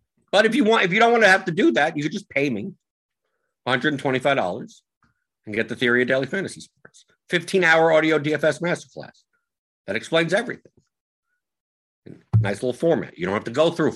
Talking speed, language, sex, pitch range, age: 195 wpm, English, male, 95-155 Hz, 50-69